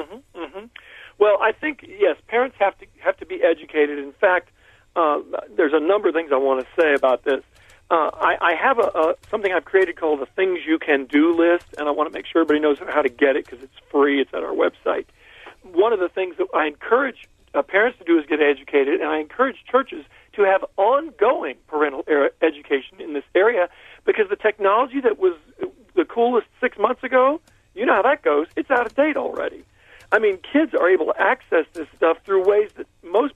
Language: English